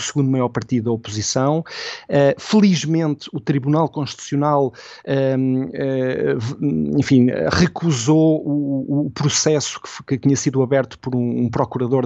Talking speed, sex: 130 wpm, male